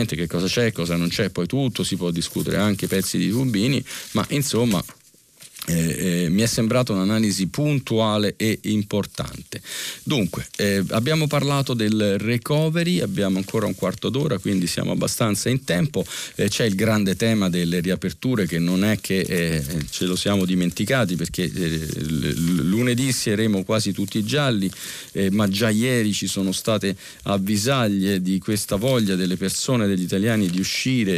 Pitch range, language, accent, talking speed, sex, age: 95-120 Hz, Italian, native, 145 wpm, male, 40-59